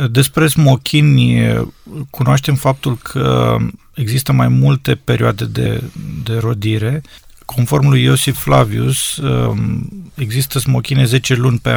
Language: Romanian